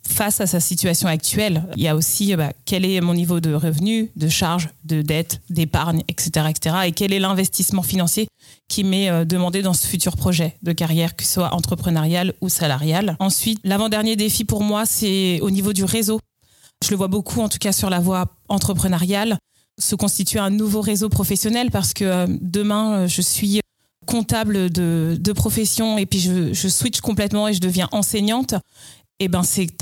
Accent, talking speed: French, 185 wpm